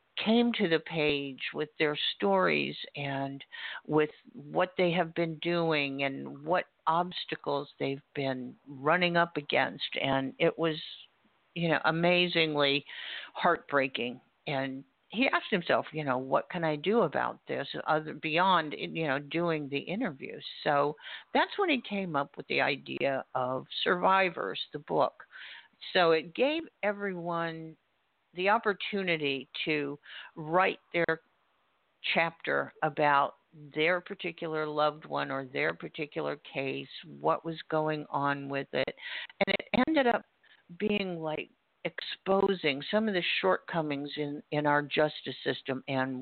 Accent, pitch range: American, 145-185 Hz